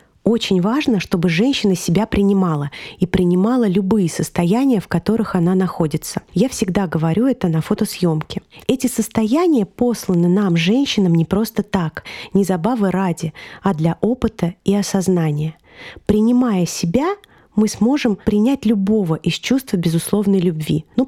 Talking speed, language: 135 wpm, Russian